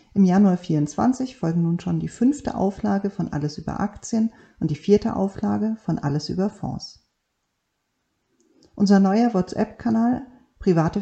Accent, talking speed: German, 135 wpm